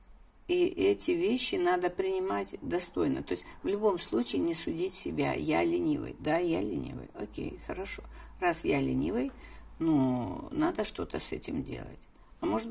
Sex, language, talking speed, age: female, Russian, 150 wpm, 50-69